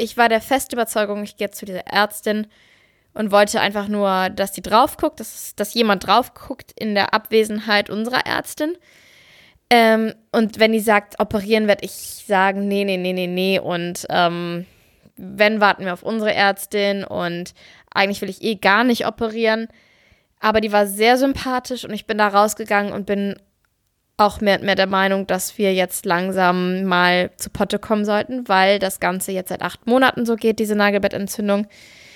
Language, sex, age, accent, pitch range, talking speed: German, female, 20-39, German, 200-225 Hz, 175 wpm